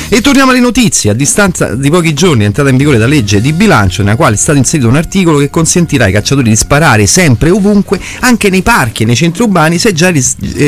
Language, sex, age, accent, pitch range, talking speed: Italian, male, 30-49, native, 110-165 Hz, 240 wpm